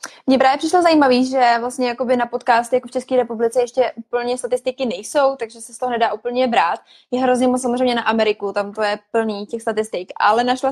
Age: 20-39